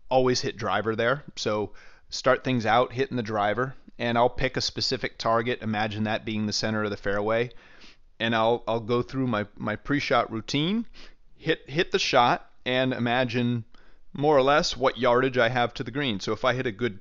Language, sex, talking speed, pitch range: English, male, 200 wpm, 105-125 Hz